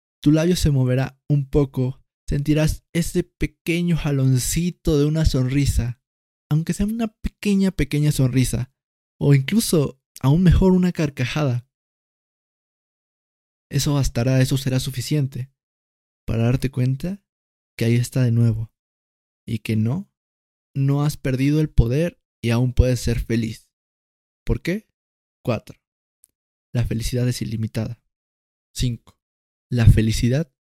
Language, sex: Spanish, male